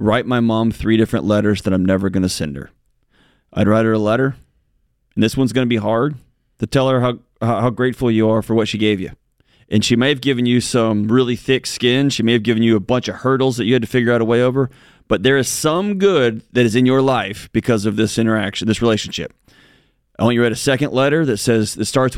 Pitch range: 110-135 Hz